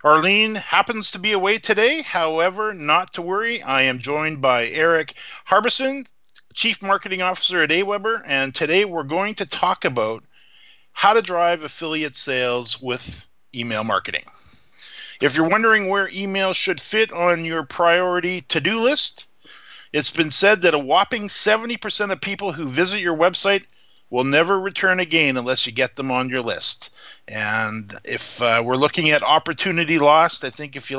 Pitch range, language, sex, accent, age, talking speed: 130-190 Hz, English, male, American, 50-69, 165 wpm